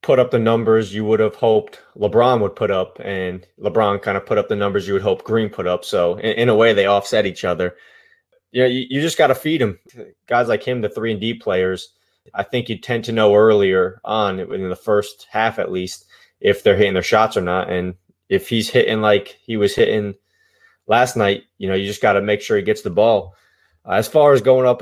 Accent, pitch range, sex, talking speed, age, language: American, 105-130 Hz, male, 245 wpm, 20-39, English